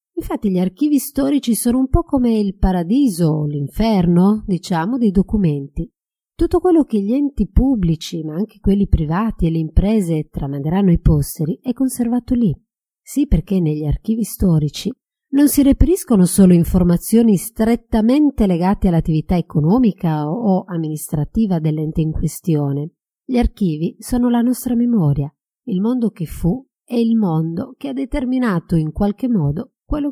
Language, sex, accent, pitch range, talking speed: Italian, female, native, 170-255 Hz, 145 wpm